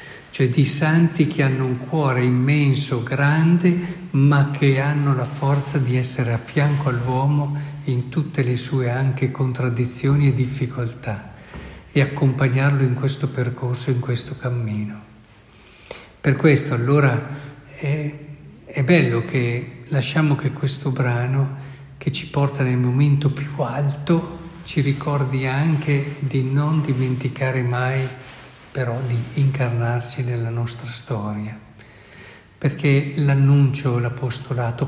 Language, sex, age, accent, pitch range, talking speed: Italian, male, 50-69, native, 125-145 Hz, 120 wpm